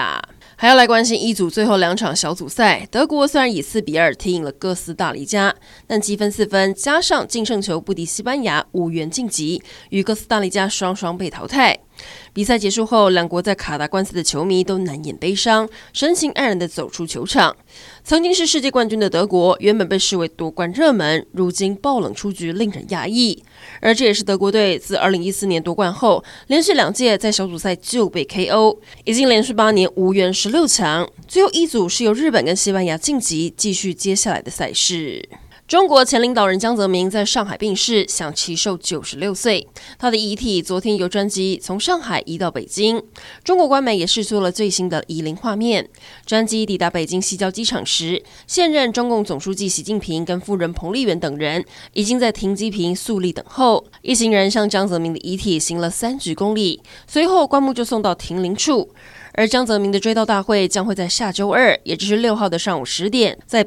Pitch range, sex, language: 180-225 Hz, female, Chinese